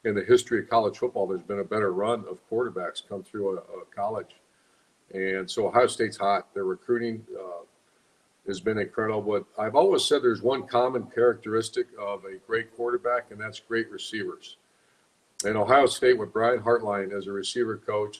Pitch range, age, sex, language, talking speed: 105-120 Hz, 50-69, male, English, 180 wpm